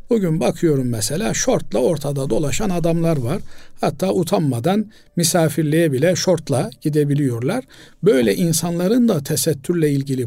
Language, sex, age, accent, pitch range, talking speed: Turkish, male, 50-69, native, 140-175 Hz, 110 wpm